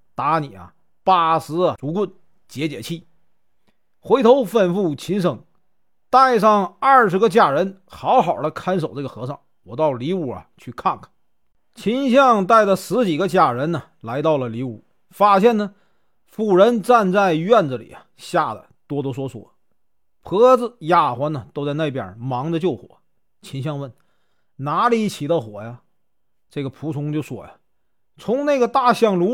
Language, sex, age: Chinese, male, 40-59